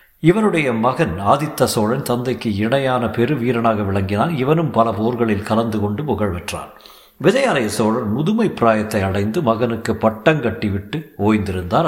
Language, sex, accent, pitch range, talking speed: Tamil, male, native, 105-130 Hz, 120 wpm